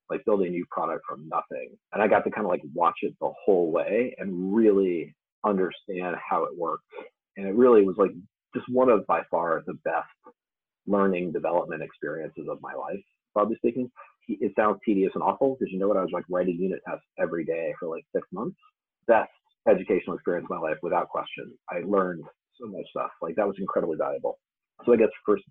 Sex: male